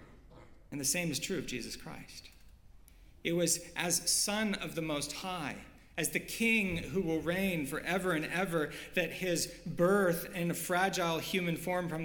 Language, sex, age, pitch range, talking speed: English, male, 40-59, 140-175 Hz, 170 wpm